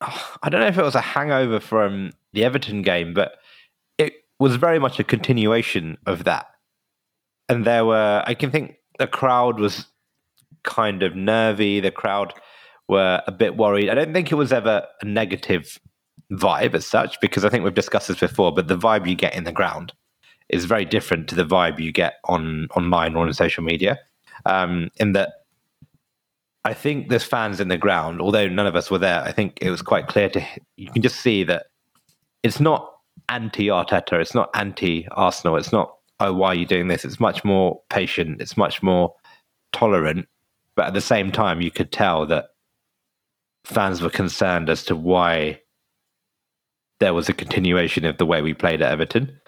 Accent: British